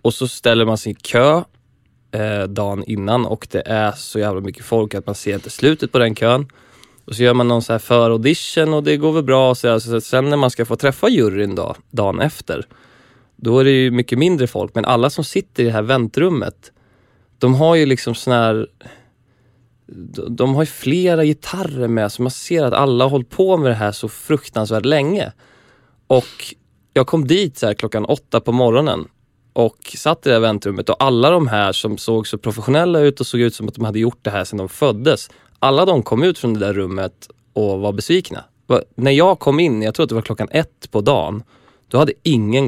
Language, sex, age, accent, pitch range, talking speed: Swedish, male, 20-39, native, 110-135 Hz, 220 wpm